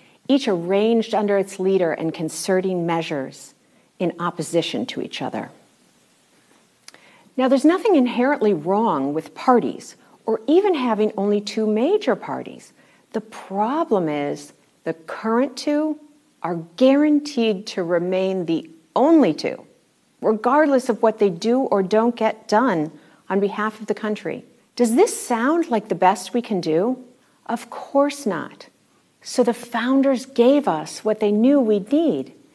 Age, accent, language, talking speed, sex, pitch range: 50-69, American, English, 140 wpm, female, 185-265 Hz